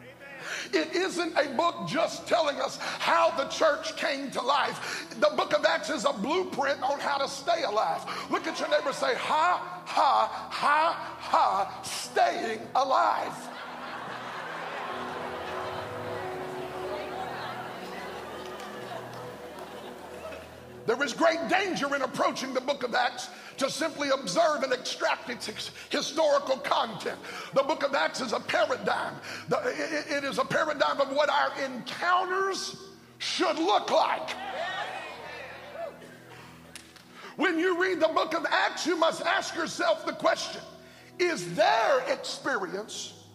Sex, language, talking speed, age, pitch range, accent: male, English, 120 wpm, 50-69, 280-340 Hz, American